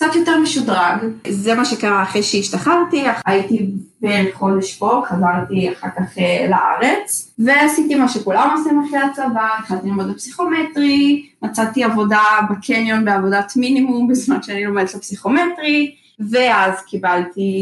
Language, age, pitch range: Hebrew, 20-39, 190-255 Hz